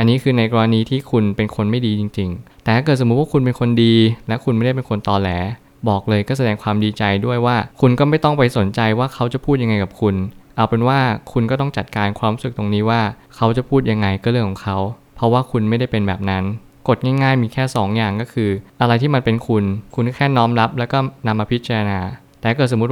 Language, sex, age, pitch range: Thai, male, 20-39, 105-125 Hz